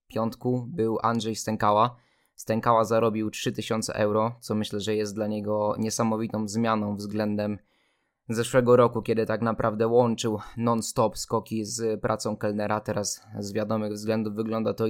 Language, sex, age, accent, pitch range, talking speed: Polish, male, 20-39, native, 110-120 Hz, 135 wpm